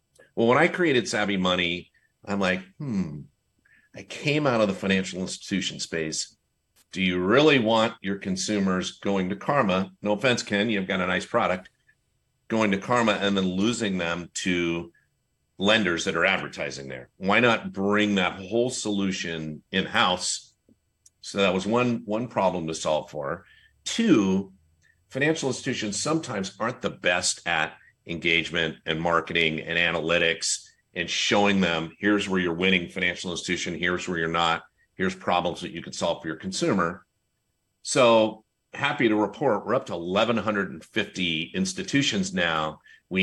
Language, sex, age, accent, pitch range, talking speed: English, male, 50-69, American, 90-110 Hz, 150 wpm